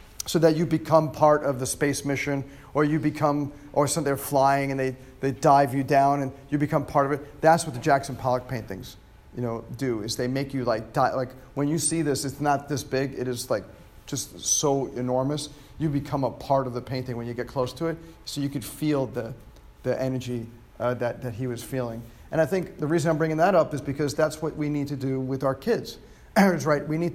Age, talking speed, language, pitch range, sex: 40-59, 235 wpm, English, 130-150 Hz, male